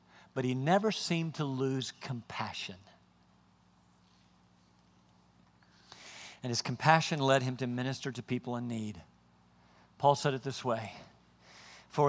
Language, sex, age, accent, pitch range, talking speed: French, male, 50-69, American, 110-160 Hz, 120 wpm